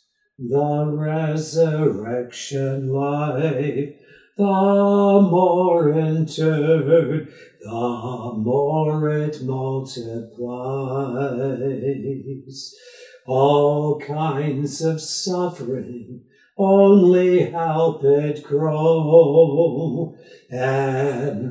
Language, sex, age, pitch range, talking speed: English, male, 60-79, 130-165 Hz, 55 wpm